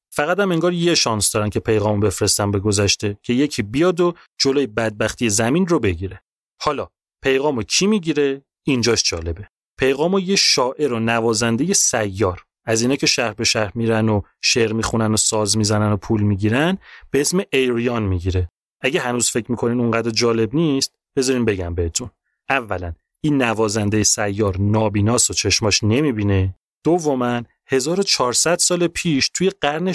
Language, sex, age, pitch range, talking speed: Persian, male, 30-49, 105-140 Hz, 155 wpm